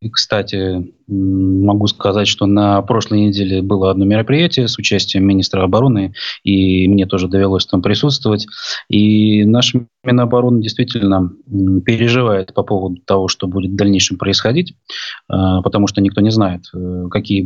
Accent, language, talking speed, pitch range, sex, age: native, Russian, 135 wpm, 95-105 Hz, male, 20-39